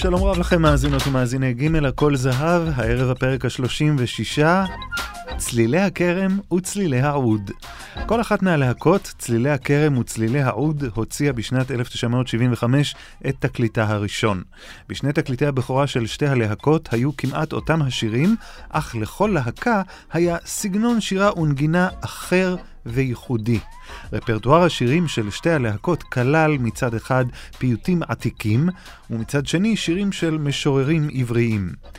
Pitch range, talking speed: 115-165 Hz, 120 wpm